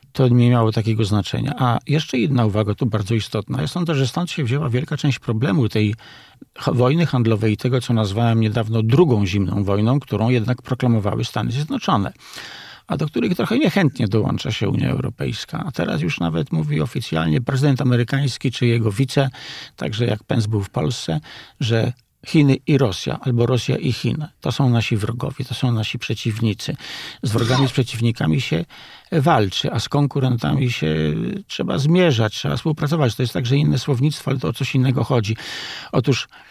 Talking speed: 175 wpm